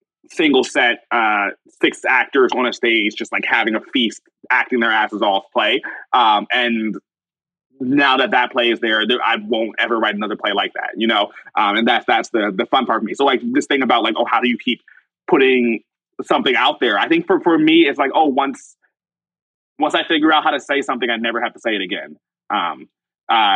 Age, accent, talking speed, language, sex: 20-39, American, 220 wpm, English, male